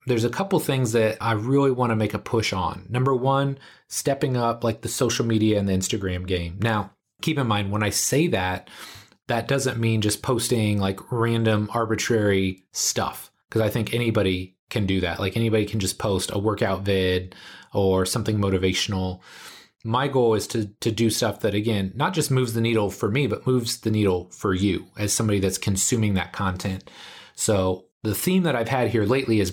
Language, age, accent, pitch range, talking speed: English, 30-49, American, 100-120 Hz, 195 wpm